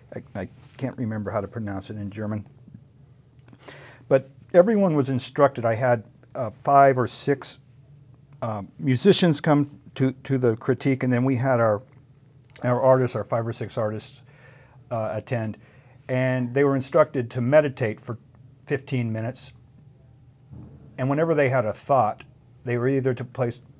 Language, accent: English, American